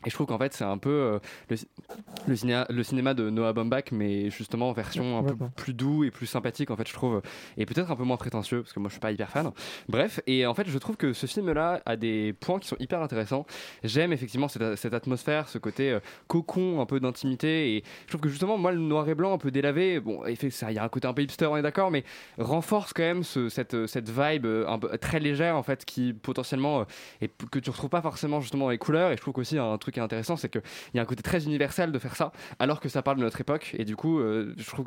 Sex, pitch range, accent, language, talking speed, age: male, 115-155 Hz, French, French, 280 wpm, 20-39